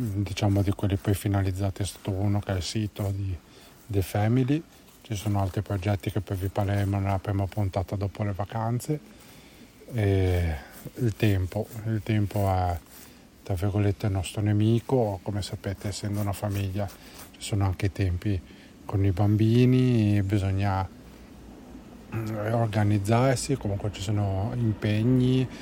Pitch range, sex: 100-110 Hz, male